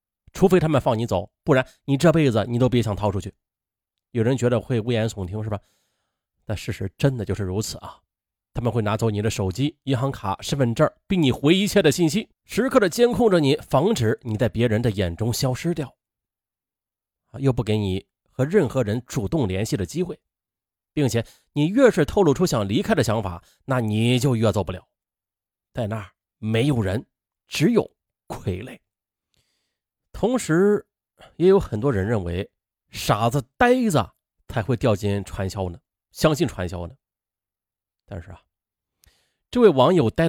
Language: Chinese